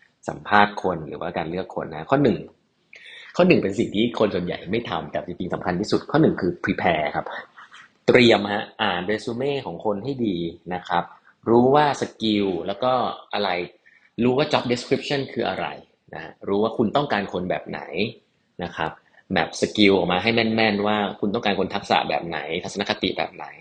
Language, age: English, 30-49